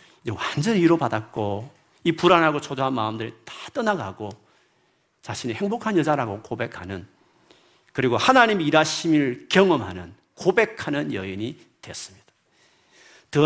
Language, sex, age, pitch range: Korean, male, 40-59, 115-165 Hz